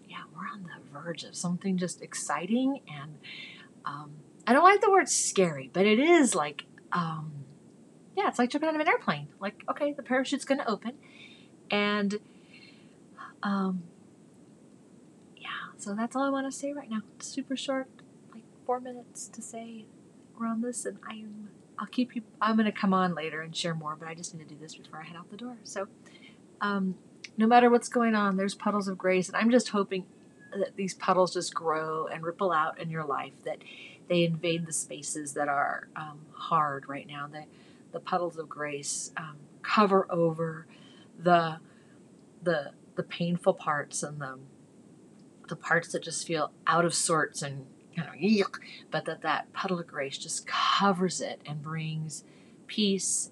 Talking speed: 180 wpm